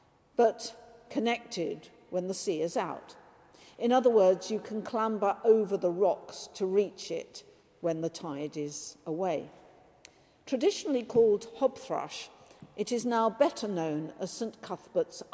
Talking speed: 135 wpm